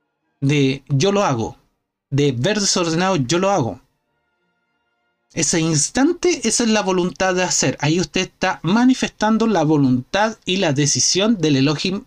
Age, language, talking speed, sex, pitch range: 30-49, Spanish, 145 wpm, male, 135-200 Hz